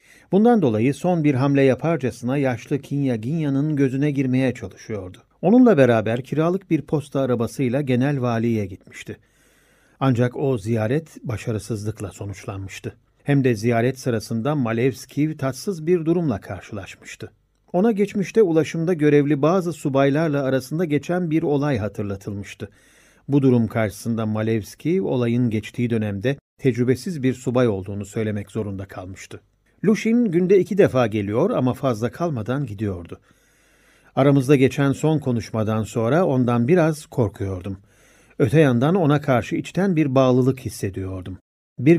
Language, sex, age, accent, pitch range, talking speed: Turkish, male, 50-69, native, 110-150 Hz, 120 wpm